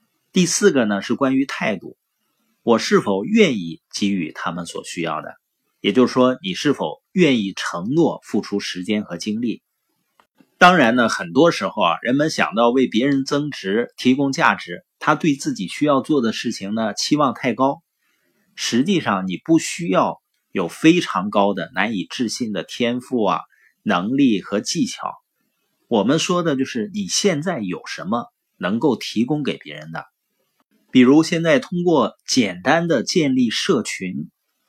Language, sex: Chinese, male